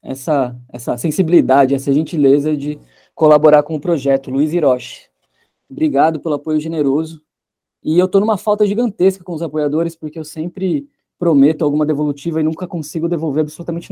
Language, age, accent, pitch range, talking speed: Portuguese, 20-39, Brazilian, 140-160 Hz, 155 wpm